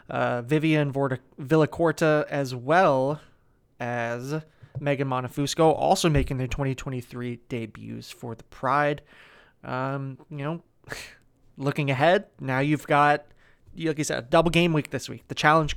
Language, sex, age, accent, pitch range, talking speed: English, male, 20-39, American, 130-155 Hz, 135 wpm